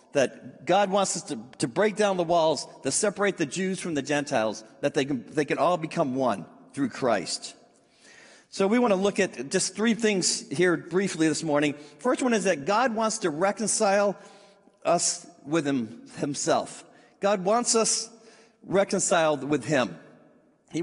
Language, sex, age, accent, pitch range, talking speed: English, male, 50-69, American, 160-215 Hz, 170 wpm